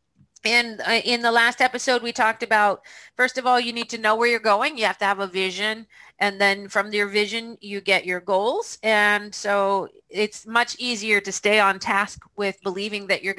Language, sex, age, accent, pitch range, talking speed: English, female, 40-59, American, 195-235 Hz, 205 wpm